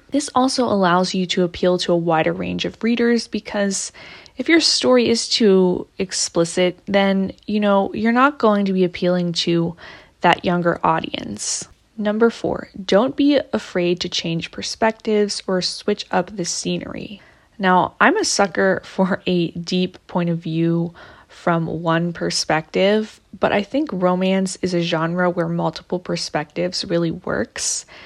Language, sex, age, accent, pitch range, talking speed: English, female, 20-39, American, 175-210 Hz, 150 wpm